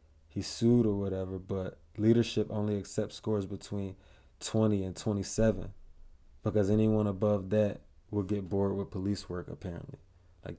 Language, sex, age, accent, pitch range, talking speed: English, male, 20-39, American, 95-110 Hz, 140 wpm